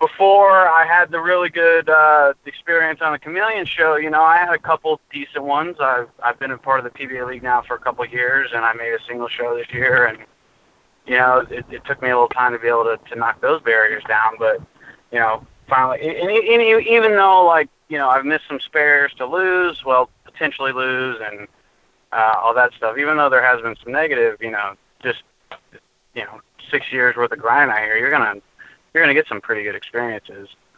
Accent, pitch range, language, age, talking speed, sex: American, 125-175 Hz, English, 20-39, 225 wpm, male